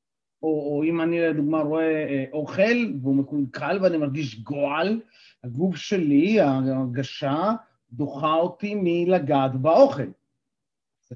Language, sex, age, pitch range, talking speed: Hebrew, male, 40-59, 135-185 Hz, 110 wpm